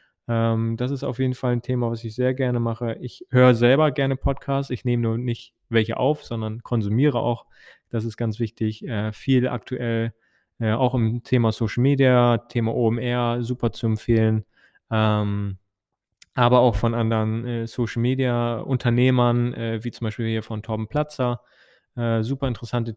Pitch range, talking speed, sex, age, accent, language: 110-130 Hz, 165 wpm, male, 20-39, German, German